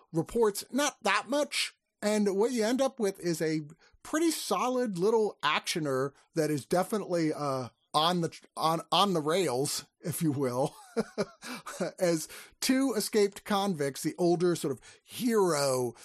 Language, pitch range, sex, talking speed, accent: English, 140-210 Hz, male, 145 wpm, American